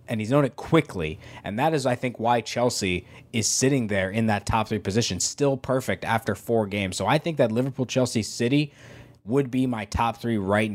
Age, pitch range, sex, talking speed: 20-39, 100-125 Hz, male, 210 wpm